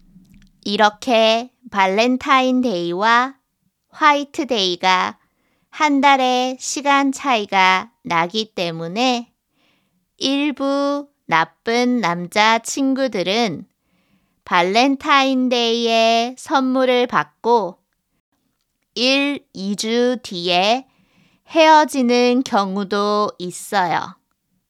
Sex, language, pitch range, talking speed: female, English, 190-255 Hz, 50 wpm